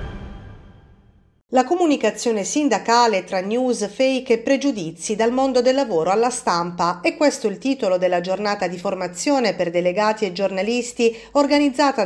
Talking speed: 135 wpm